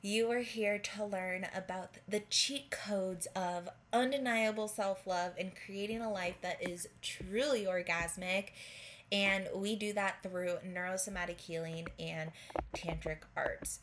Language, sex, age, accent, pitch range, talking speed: English, female, 20-39, American, 180-215 Hz, 130 wpm